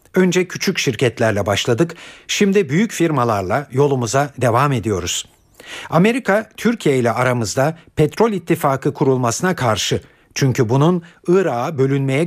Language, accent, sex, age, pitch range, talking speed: Turkish, native, male, 50-69, 120-170 Hz, 110 wpm